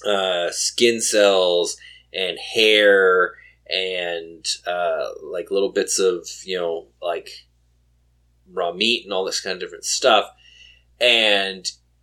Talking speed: 120 wpm